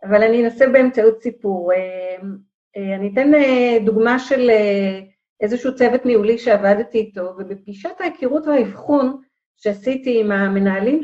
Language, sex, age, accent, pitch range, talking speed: Hebrew, female, 40-59, native, 210-280 Hz, 110 wpm